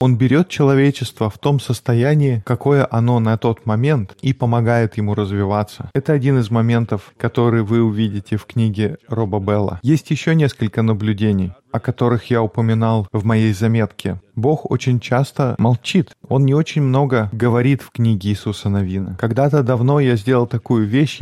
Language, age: Russian, 20-39